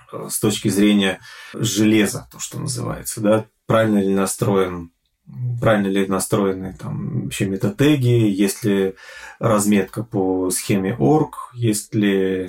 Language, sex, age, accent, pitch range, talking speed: Russian, male, 30-49, native, 95-115 Hz, 115 wpm